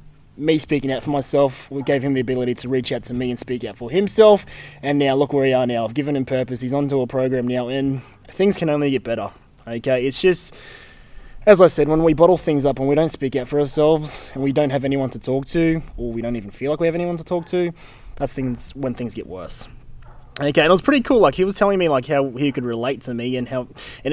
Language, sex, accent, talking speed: English, male, Australian, 265 wpm